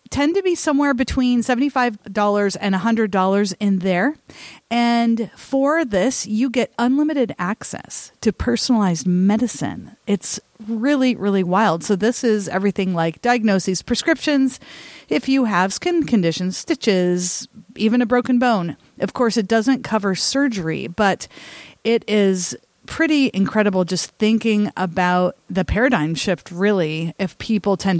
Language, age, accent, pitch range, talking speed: English, 40-59, American, 185-245 Hz, 135 wpm